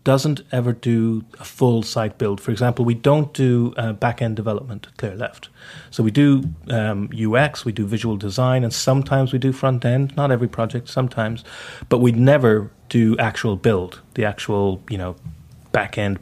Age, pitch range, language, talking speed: 30-49, 110-135 Hz, English, 170 wpm